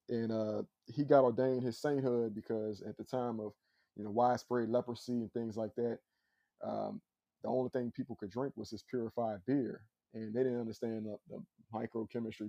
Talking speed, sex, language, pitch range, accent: 185 wpm, male, English, 110-125 Hz, American